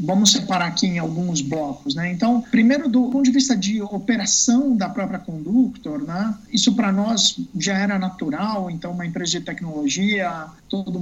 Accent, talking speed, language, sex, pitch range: Brazilian, 170 wpm, Portuguese, male, 180-230 Hz